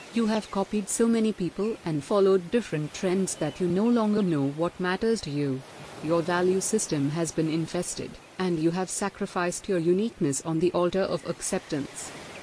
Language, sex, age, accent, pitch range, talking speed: Hindi, female, 50-69, native, 160-200 Hz, 175 wpm